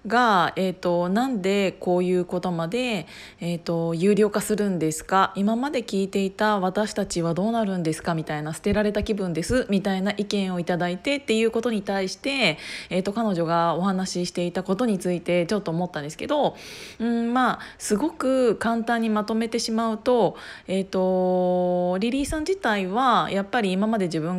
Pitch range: 180-220 Hz